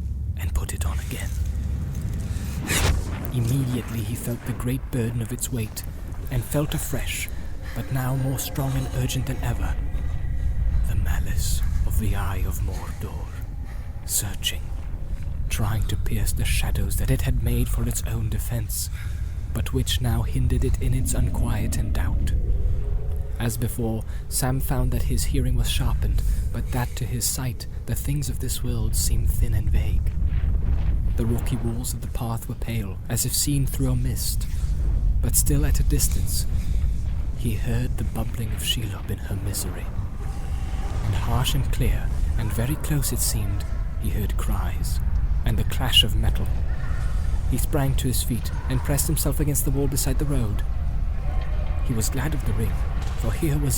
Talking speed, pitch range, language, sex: 165 wpm, 75-110 Hz, English, male